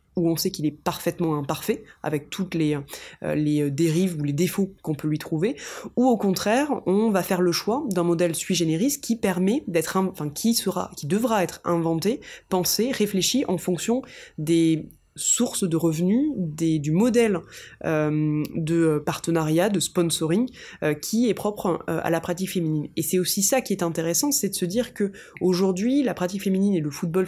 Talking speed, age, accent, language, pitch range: 175 wpm, 20-39, French, French, 160-200 Hz